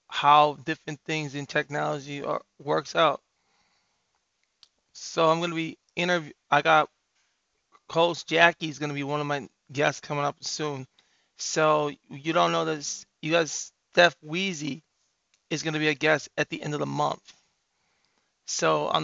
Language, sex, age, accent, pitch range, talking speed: English, male, 20-39, American, 145-160 Hz, 155 wpm